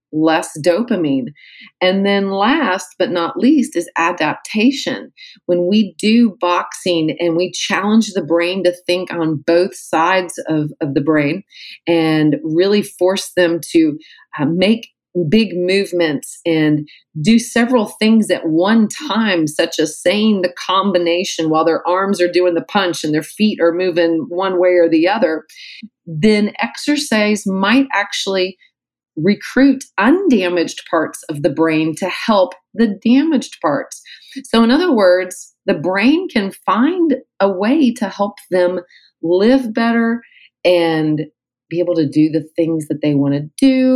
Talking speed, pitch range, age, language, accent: 145 wpm, 160-215 Hz, 40-59, English, American